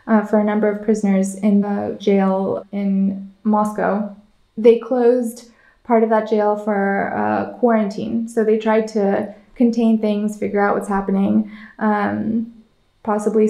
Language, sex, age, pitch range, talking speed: English, female, 20-39, 210-235 Hz, 140 wpm